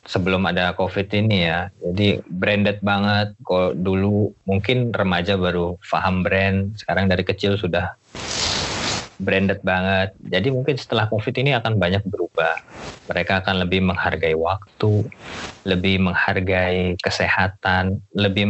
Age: 20-39